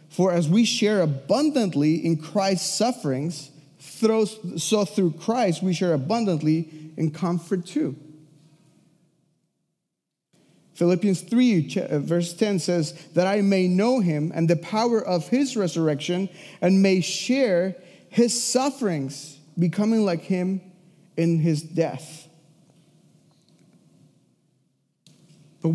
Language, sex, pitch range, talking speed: English, male, 155-195 Hz, 105 wpm